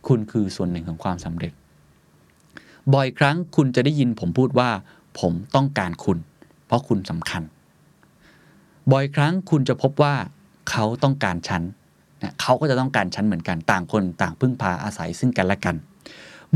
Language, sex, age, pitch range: Thai, male, 20-39, 90-135 Hz